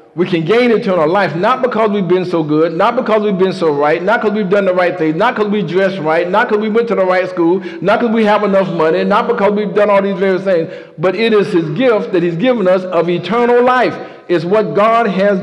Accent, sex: American, male